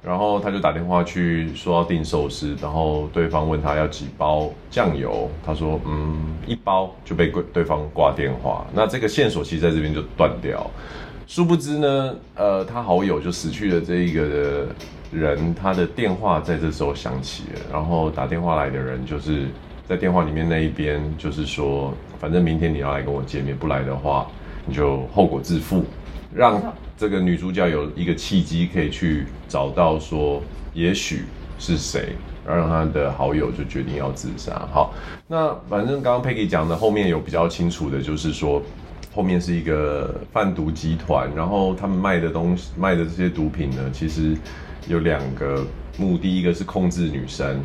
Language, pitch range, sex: Chinese, 70-85 Hz, male